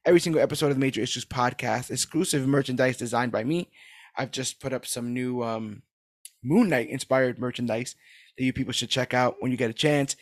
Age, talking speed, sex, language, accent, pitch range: 20-39, 205 wpm, male, English, American, 125-140 Hz